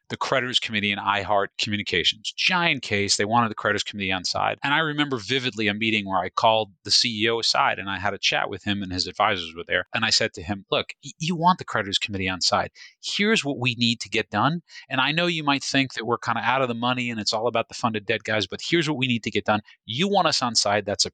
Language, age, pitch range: English, 30-49, 105-140 Hz